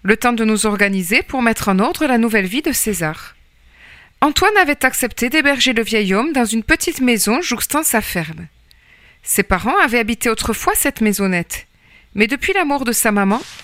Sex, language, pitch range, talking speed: female, French, 210-290 Hz, 185 wpm